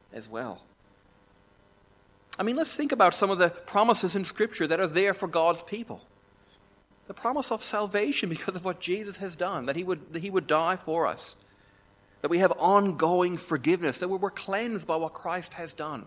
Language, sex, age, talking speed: English, male, 30-49, 185 wpm